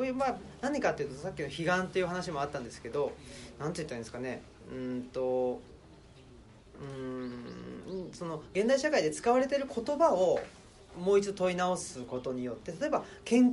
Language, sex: Japanese, male